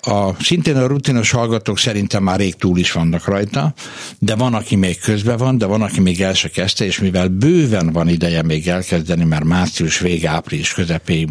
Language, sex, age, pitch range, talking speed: Hungarian, male, 60-79, 85-110 Hz, 190 wpm